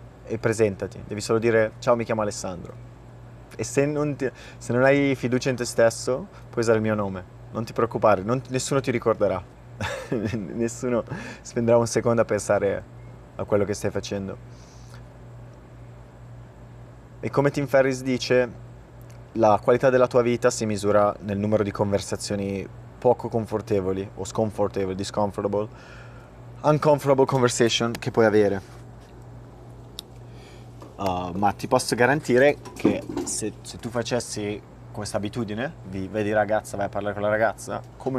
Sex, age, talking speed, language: male, 30-49, 140 wpm, Italian